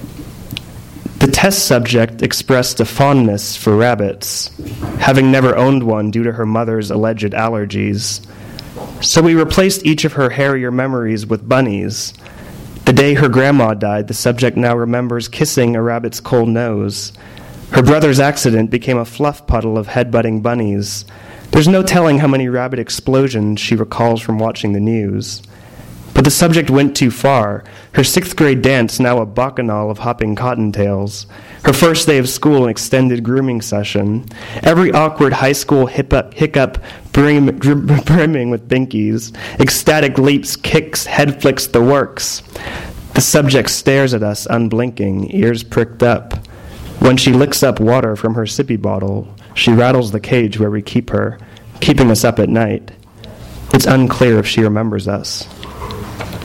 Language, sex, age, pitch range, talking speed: English, male, 30-49, 105-135 Hz, 155 wpm